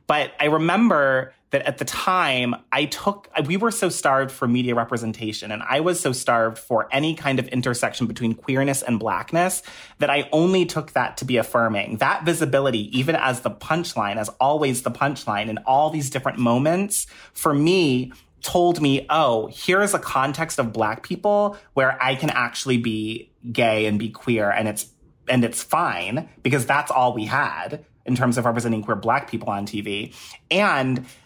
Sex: male